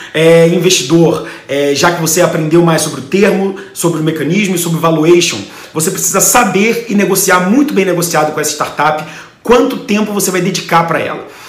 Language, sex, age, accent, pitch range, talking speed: English, male, 40-59, Brazilian, 160-195 Hz, 185 wpm